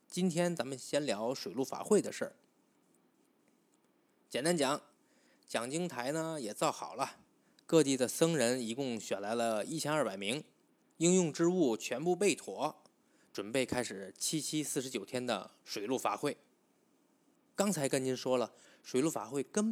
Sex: male